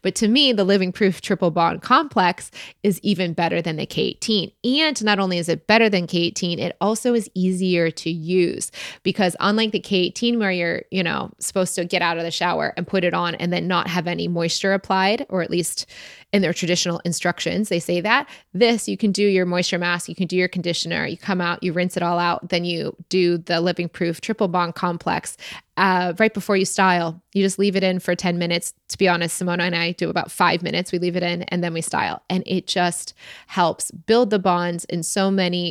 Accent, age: American, 20-39